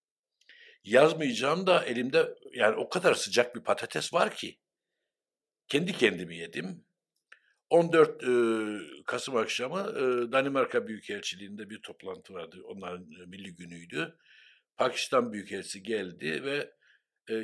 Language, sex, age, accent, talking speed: Turkish, male, 60-79, native, 115 wpm